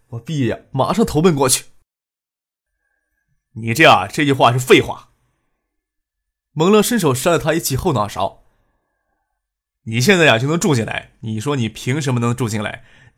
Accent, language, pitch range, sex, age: native, Chinese, 120-160 Hz, male, 20-39